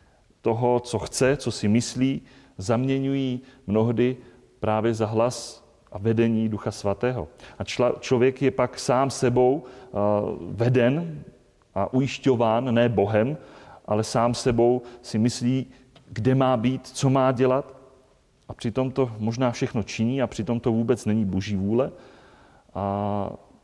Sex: male